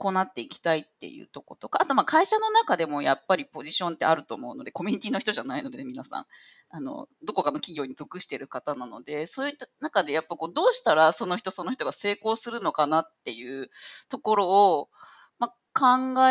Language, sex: Japanese, female